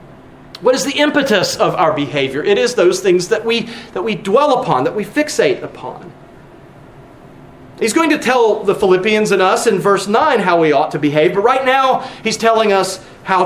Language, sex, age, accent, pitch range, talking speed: English, male, 40-59, American, 175-255 Hz, 190 wpm